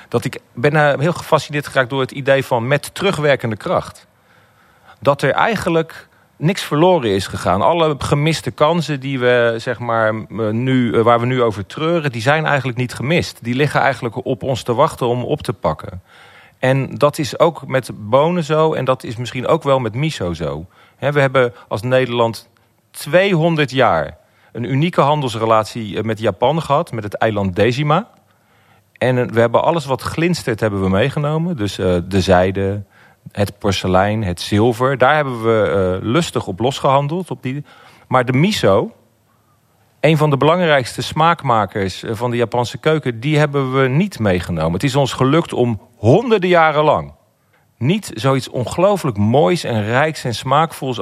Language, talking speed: Dutch, 165 wpm